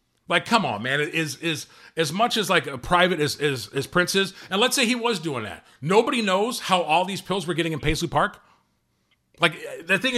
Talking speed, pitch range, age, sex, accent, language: 230 wpm, 150-200 Hz, 40-59, male, American, English